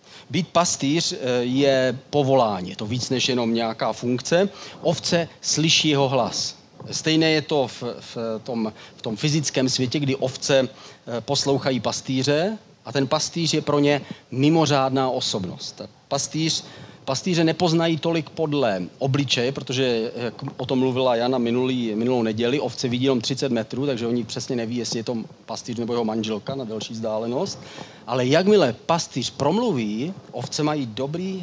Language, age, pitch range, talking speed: Czech, 40-59, 120-150 Hz, 145 wpm